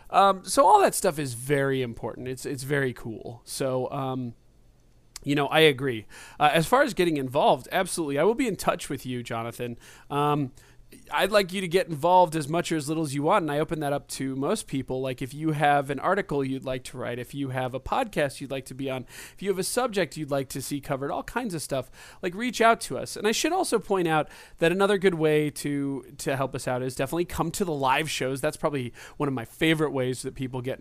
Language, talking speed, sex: English, 245 wpm, male